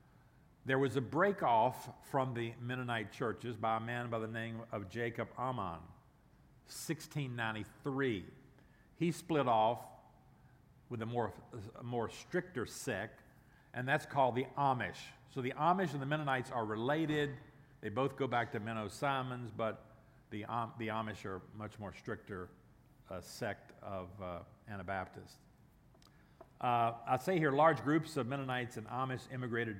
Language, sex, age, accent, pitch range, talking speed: English, male, 50-69, American, 110-135 Hz, 145 wpm